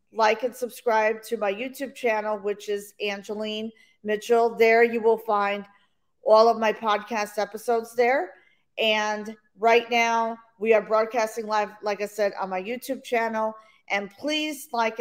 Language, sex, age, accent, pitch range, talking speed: English, female, 40-59, American, 200-235 Hz, 150 wpm